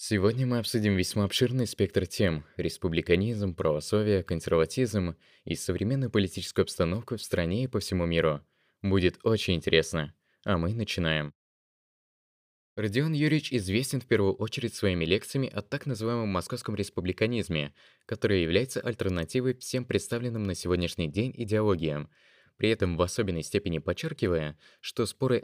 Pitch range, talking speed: 90-120 Hz, 135 wpm